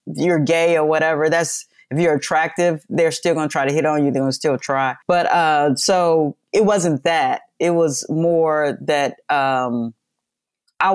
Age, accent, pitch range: 30-49, American, 130-160 Hz